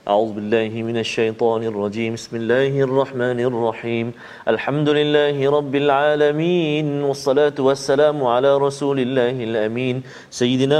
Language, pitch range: Malayalam, 125-150 Hz